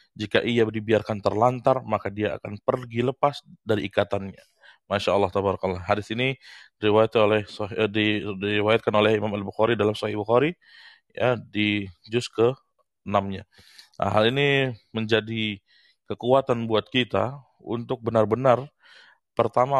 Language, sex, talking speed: Indonesian, male, 125 wpm